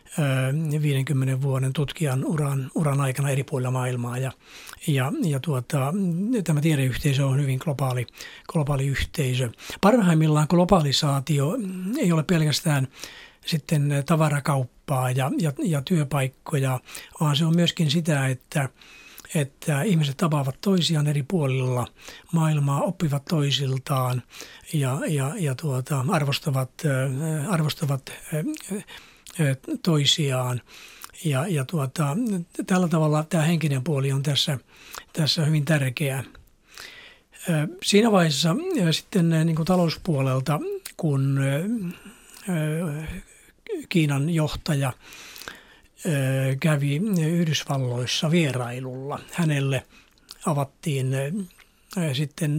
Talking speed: 90 wpm